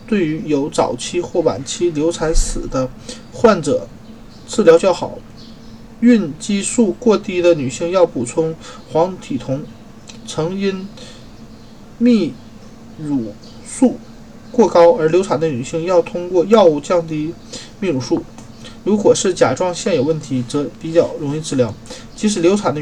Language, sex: Chinese, male